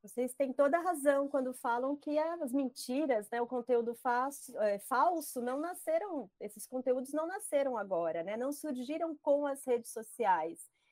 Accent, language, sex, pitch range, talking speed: Brazilian, Portuguese, female, 220-285 Hz, 160 wpm